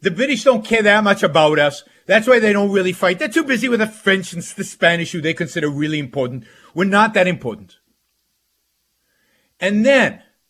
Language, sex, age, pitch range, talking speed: English, male, 50-69, 175-225 Hz, 195 wpm